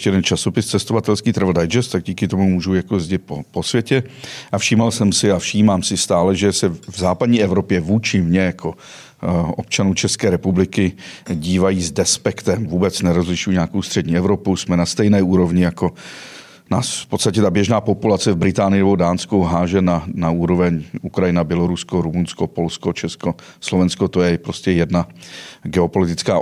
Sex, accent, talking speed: male, native, 165 wpm